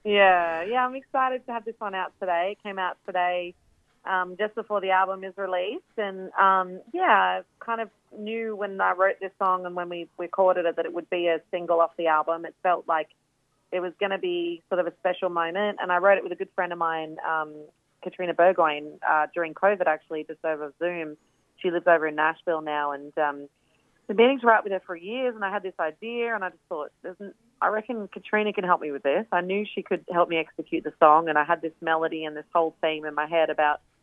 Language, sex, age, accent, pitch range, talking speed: English, female, 30-49, Australian, 155-190 Hz, 245 wpm